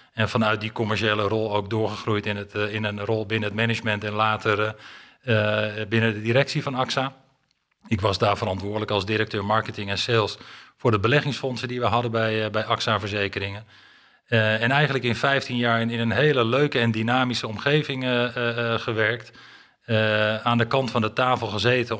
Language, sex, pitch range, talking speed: Dutch, male, 105-120 Hz, 175 wpm